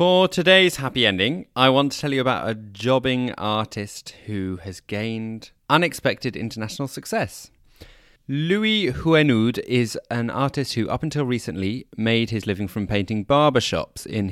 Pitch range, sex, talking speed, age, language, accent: 90-120 Hz, male, 145 wpm, 30-49, English, British